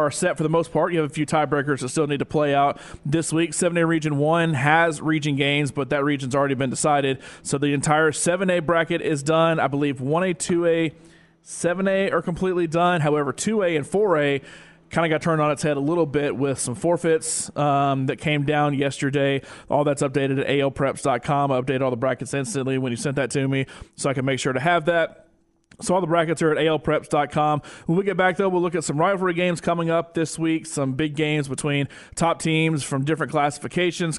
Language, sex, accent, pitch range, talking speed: English, male, American, 140-165 Hz, 215 wpm